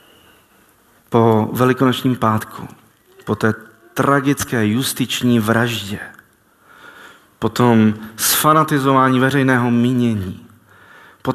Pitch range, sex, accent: 105-130 Hz, male, native